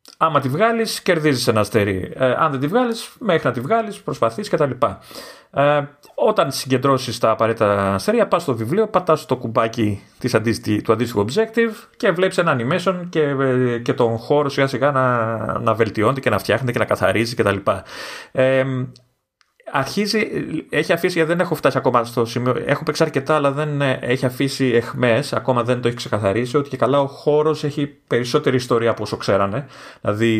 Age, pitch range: 30-49, 110-145 Hz